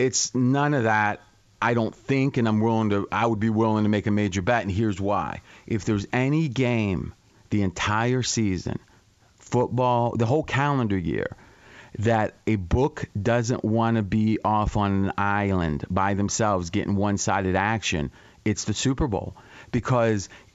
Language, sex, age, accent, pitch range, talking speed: English, male, 30-49, American, 105-140 Hz, 165 wpm